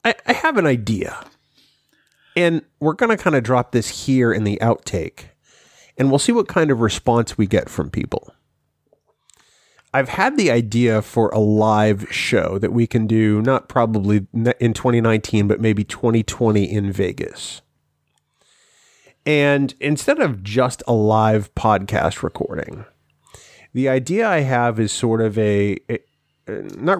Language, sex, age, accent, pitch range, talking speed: English, male, 30-49, American, 105-130 Hz, 145 wpm